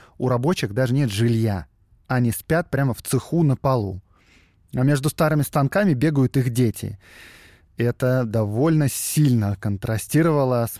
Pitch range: 110-150 Hz